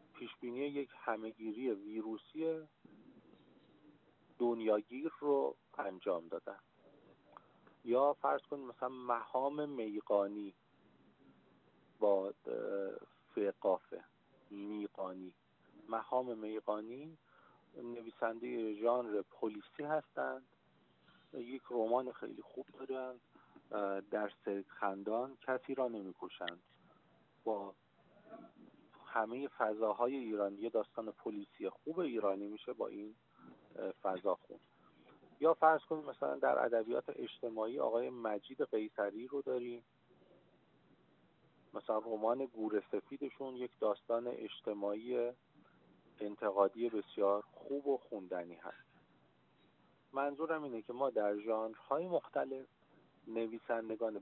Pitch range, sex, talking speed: 105-135 Hz, male, 85 wpm